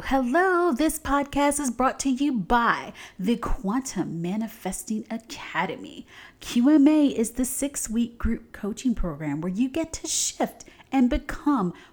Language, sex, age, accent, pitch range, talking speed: English, female, 30-49, American, 185-270 Hz, 135 wpm